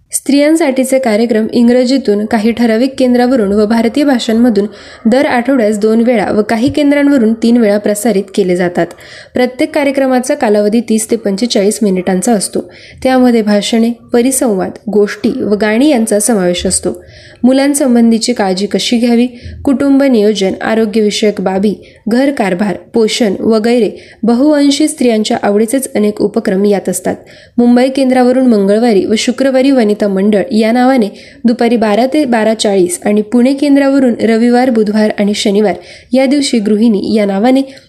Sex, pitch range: female, 210-260 Hz